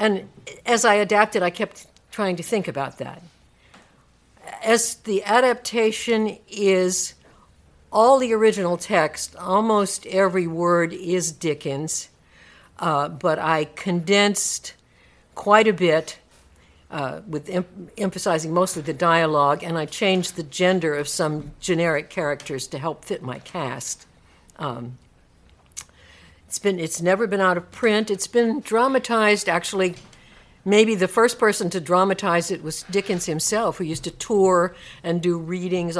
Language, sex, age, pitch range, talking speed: English, female, 60-79, 160-210 Hz, 135 wpm